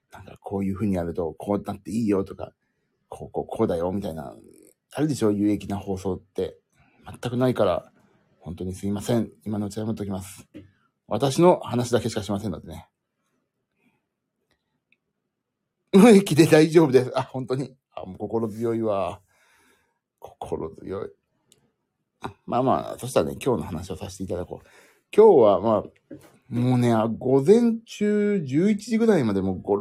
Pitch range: 100-140 Hz